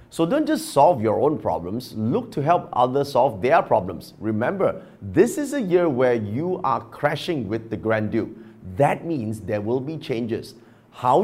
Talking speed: 180 wpm